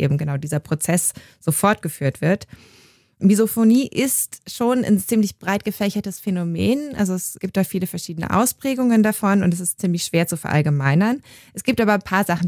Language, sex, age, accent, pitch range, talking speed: German, female, 20-39, German, 160-215 Hz, 175 wpm